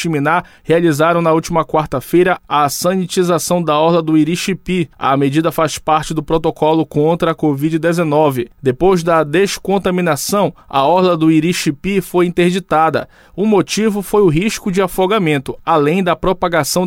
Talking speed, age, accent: 135 wpm, 20-39, Brazilian